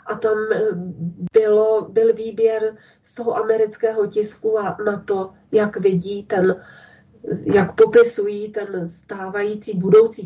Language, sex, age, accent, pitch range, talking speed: Czech, female, 30-49, native, 205-240 Hz, 115 wpm